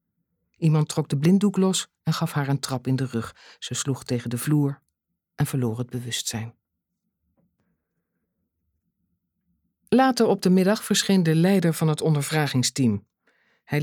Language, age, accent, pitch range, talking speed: Dutch, 50-69, Dutch, 135-195 Hz, 145 wpm